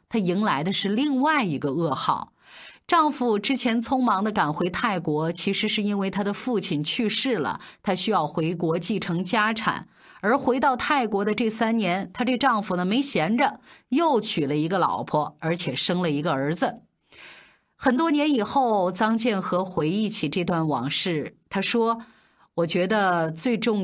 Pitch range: 160-230 Hz